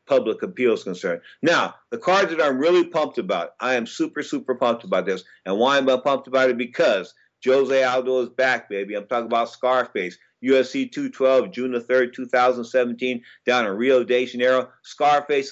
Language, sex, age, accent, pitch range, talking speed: English, male, 50-69, American, 120-140 Hz, 185 wpm